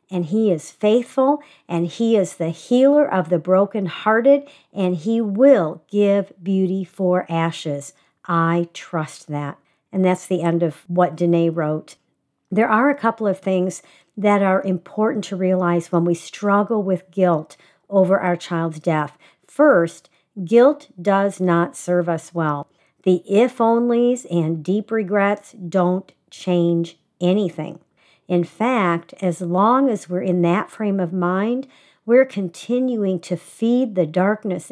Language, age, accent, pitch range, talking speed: English, 50-69, American, 175-210 Hz, 140 wpm